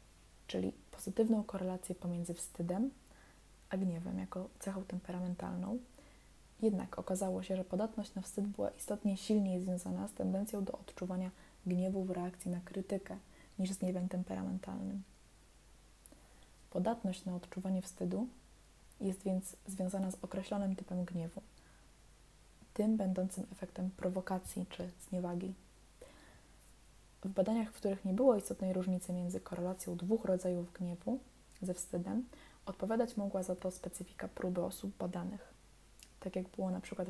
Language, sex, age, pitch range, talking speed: Polish, female, 20-39, 180-200 Hz, 130 wpm